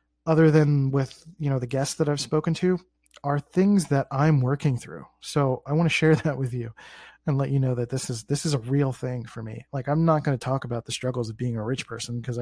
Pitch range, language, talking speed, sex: 125-155 Hz, English, 260 wpm, male